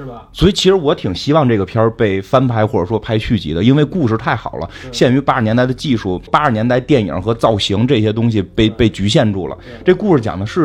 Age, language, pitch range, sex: 30-49, Chinese, 100-130 Hz, male